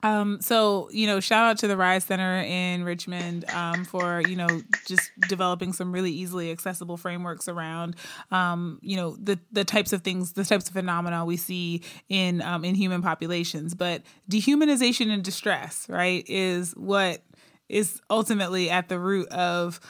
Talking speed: 170 wpm